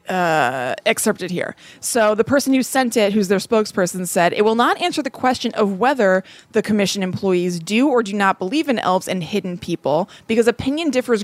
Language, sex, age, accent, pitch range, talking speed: English, female, 20-39, American, 195-255 Hz, 200 wpm